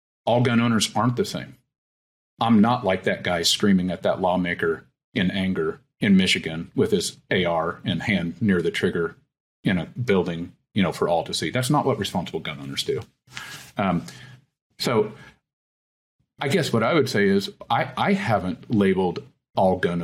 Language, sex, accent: English, male, American